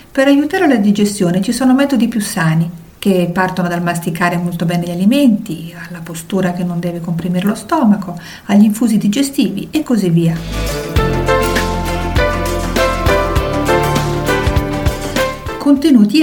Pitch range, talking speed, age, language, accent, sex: 180-245 Hz, 120 wpm, 50-69, Italian, native, female